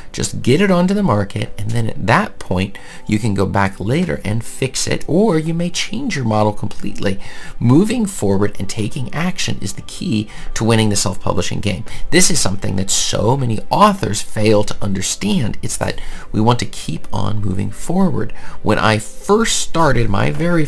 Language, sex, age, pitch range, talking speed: English, male, 40-59, 100-130 Hz, 185 wpm